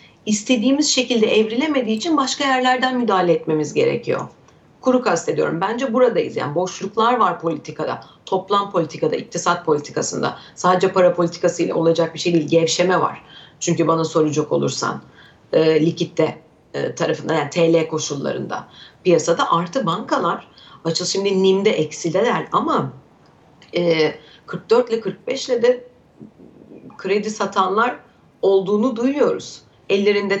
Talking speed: 120 wpm